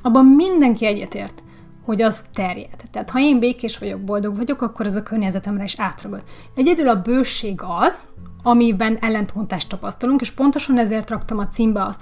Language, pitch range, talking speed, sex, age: Hungarian, 200-245 Hz, 165 wpm, female, 30-49